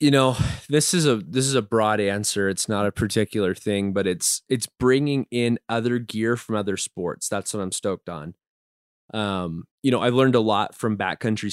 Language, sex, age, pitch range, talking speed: English, male, 20-39, 100-125 Hz, 205 wpm